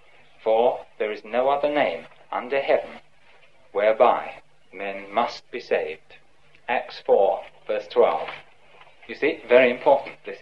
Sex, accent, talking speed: male, British, 125 wpm